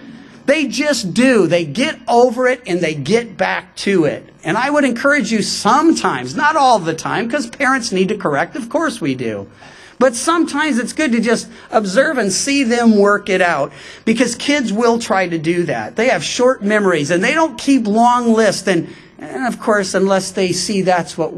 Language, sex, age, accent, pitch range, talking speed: English, male, 50-69, American, 185-250 Hz, 200 wpm